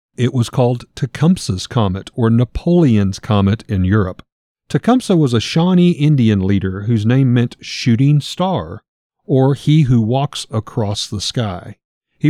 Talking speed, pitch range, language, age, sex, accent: 140 wpm, 105-150 Hz, English, 40-59, male, American